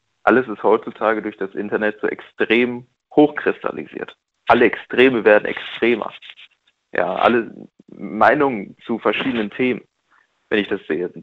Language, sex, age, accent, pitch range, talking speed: German, male, 40-59, German, 105-130 Hz, 125 wpm